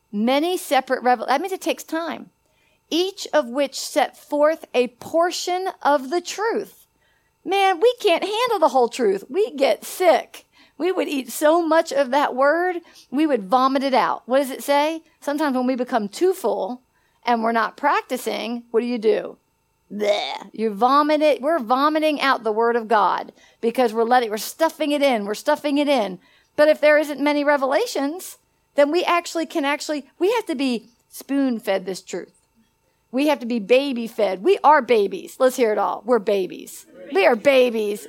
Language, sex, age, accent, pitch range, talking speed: English, female, 50-69, American, 240-335 Hz, 185 wpm